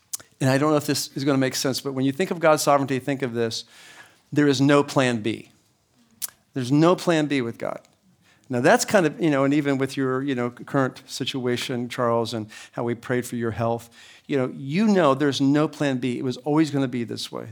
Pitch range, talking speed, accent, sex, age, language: 120-150 Hz, 235 wpm, American, male, 50-69, English